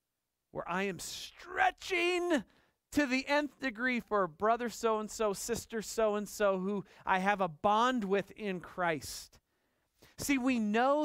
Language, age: English, 40-59